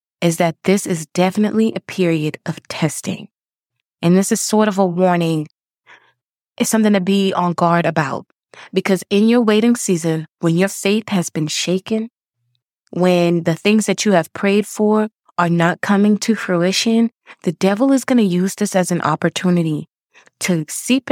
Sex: female